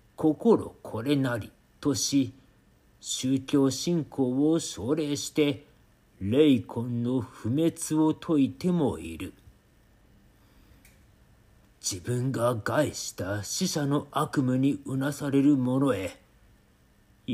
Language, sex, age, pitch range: Japanese, male, 40-59, 120-165 Hz